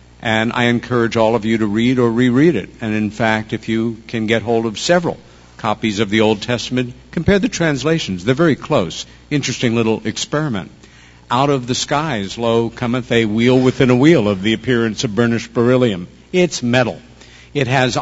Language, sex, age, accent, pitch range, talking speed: English, male, 60-79, American, 100-130 Hz, 185 wpm